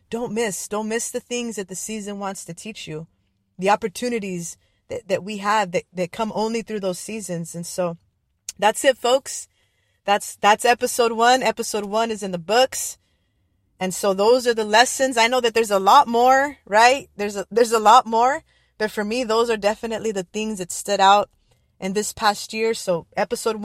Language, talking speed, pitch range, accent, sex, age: English, 200 wpm, 200-245 Hz, American, female, 20-39